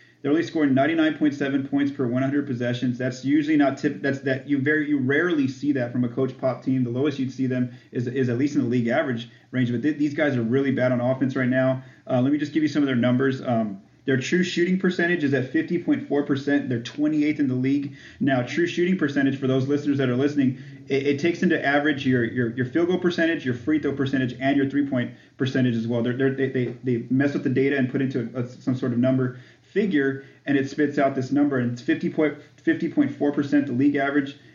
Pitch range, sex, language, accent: 125-145 Hz, male, English, American